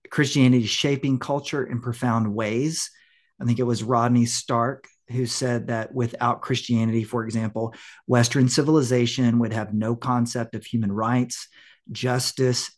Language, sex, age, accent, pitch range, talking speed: English, male, 40-59, American, 115-130 Hz, 135 wpm